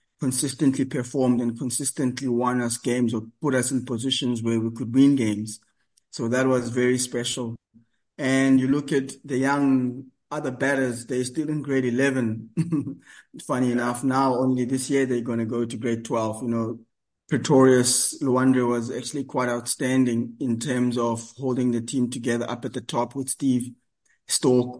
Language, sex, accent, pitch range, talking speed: English, male, South African, 120-135 Hz, 170 wpm